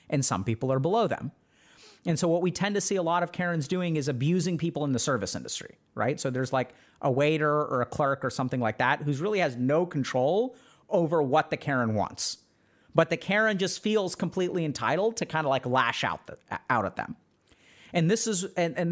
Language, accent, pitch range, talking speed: English, American, 140-190 Hz, 205 wpm